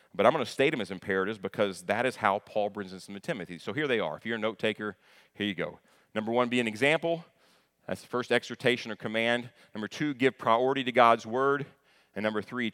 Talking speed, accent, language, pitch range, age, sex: 235 wpm, American, English, 90-120 Hz, 40-59, male